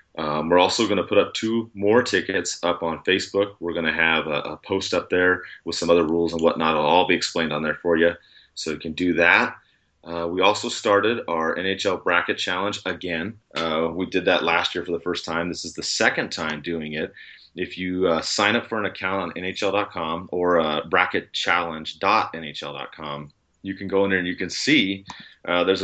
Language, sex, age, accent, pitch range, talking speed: English, male, 30-49, American, 80-95 Hz, 210 wpm